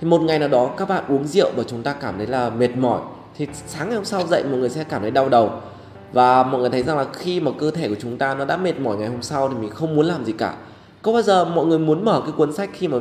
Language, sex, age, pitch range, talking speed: Vietnamese, male, 20-39, 125-170 Hz, 320 wpm